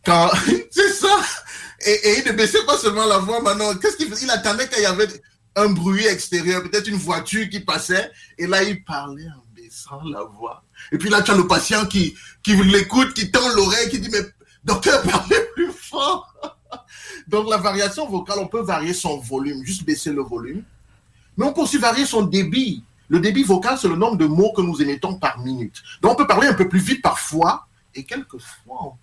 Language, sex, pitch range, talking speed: English, male, 140-210 Hz, 215 wpm